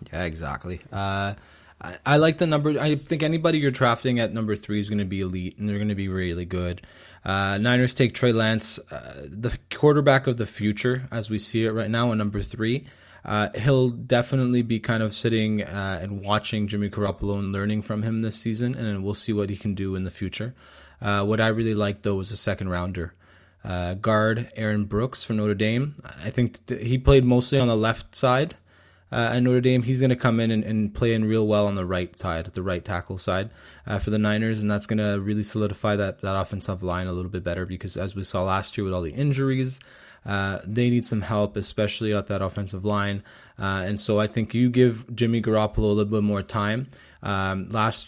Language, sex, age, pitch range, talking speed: English, male, 20-39, 100-115 Hz, 220 wpm